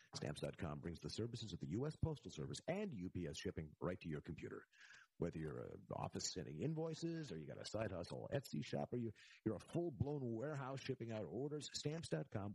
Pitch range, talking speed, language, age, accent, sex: 100-155 Hz, 190 wpm, English, 50-69, American, male